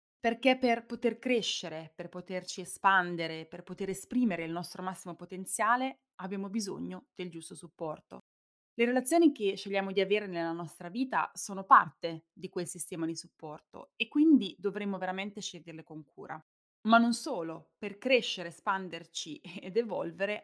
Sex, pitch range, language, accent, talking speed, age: female, 170-215 Hz, Italian, native, 145 wpm, 20-39